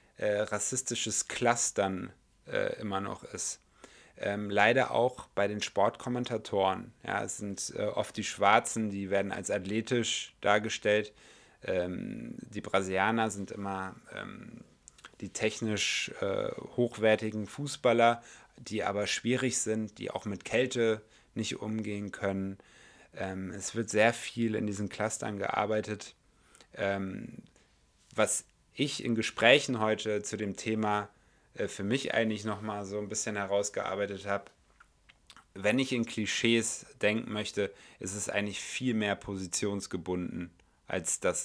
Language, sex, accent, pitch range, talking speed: German, male, German, 95-110 Hz, 125 wpm